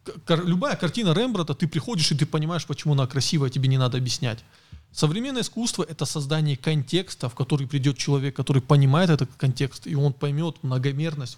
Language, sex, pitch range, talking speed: Russian, male, 130-160 Hz, 170 wpm